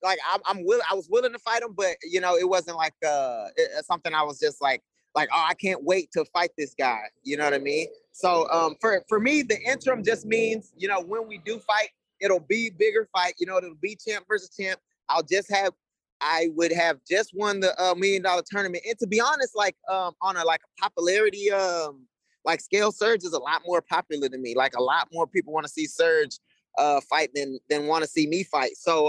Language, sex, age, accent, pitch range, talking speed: English, male, 20-39, American, 160-200 Hz, 235 wpm